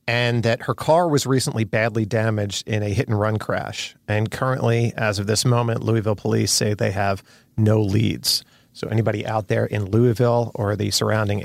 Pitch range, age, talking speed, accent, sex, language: 105-130 Hz, 40-59, 180 wpm, American, male, English